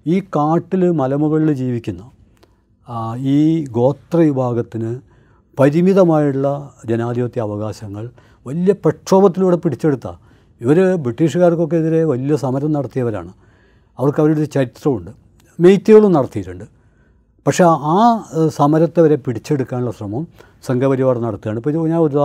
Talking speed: 90 wpm